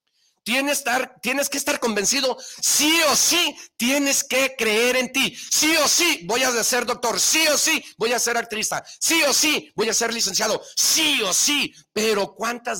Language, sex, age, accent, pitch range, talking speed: Spanish, male, 50-69, Mexican, 185-245 Hz, 185 wpm